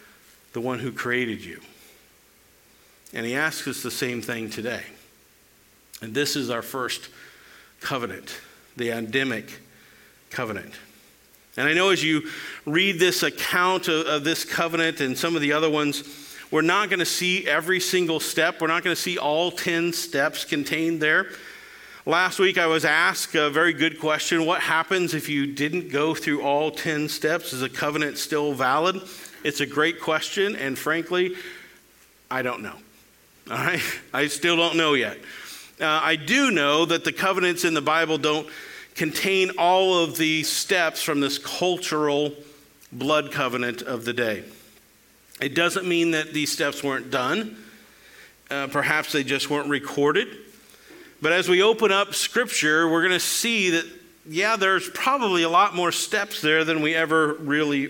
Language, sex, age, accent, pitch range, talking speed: English, male, 50-69, American, 140-170 Hz, 165 wpm